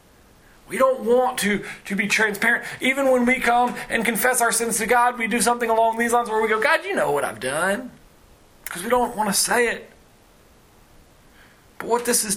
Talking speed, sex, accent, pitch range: 210 wpm, male, American, 220-260 Hz